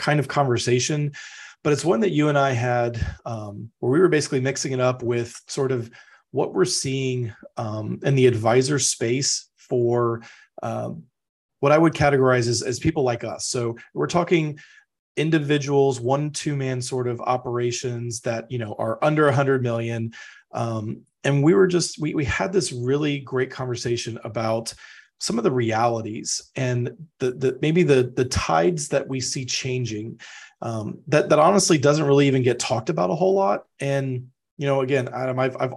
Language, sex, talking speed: English, male, 180 wpm